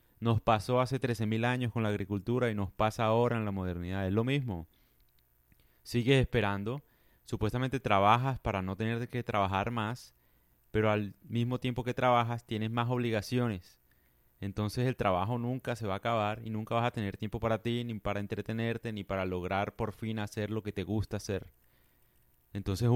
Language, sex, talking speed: Spanish, male, 180 wpm